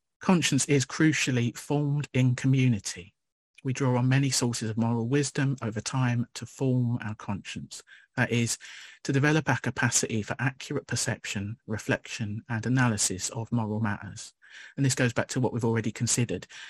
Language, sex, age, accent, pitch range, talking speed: English, male, 40-59, British, 110-130 Hz, 160 wpm